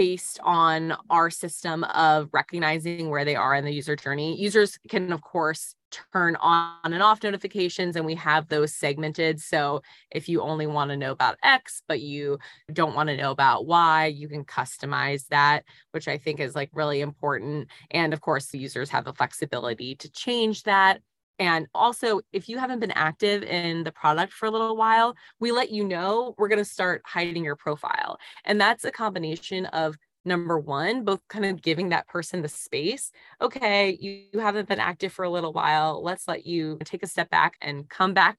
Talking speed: 195 wpm